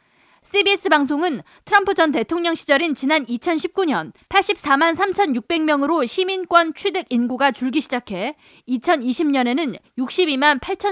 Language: Korean